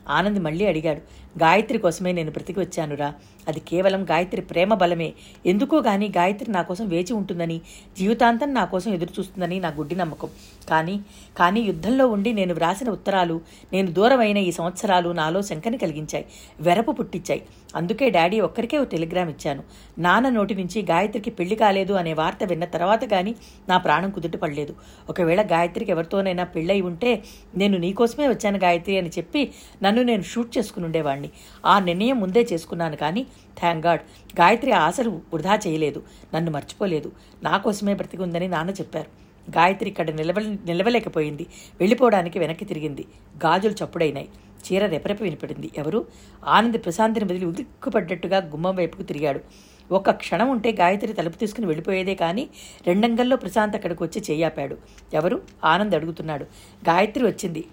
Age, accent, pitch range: 50-69, native, 170-215 Hz